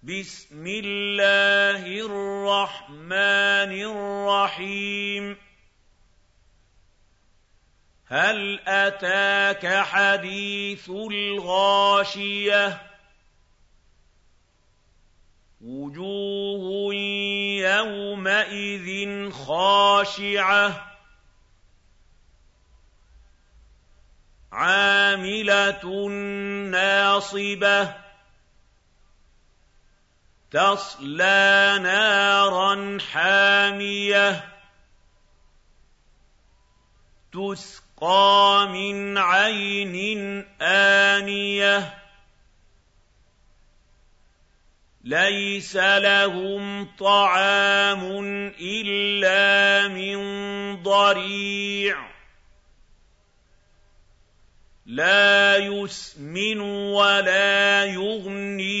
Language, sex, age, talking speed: Arabic, male, 50-69, 30 wpm